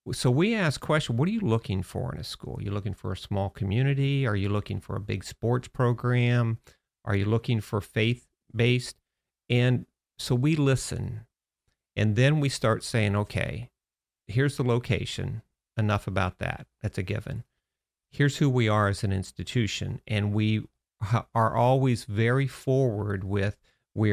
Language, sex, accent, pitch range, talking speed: English, male, American, 105-125 Hz, 165 wpm